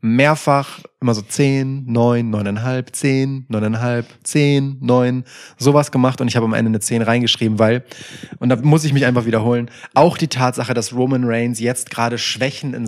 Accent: German